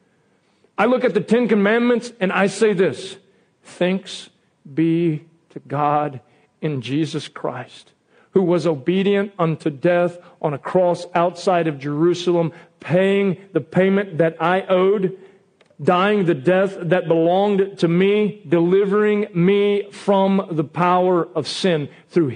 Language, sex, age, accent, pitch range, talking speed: English, male, 50-69, American, 165-215 Hz, 130 wpm